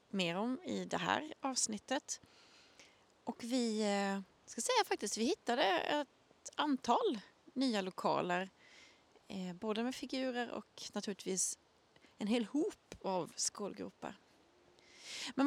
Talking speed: 110 wpm